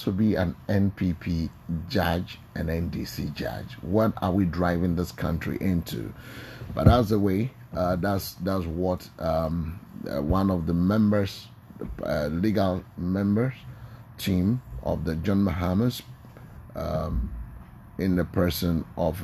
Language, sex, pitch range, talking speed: English, male, 85-110 Hz, 130 wpm